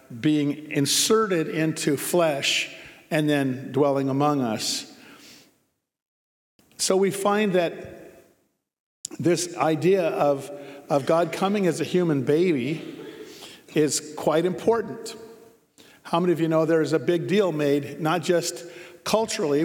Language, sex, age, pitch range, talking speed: English, male, 50-69, 145-175 Hz, 120 wpm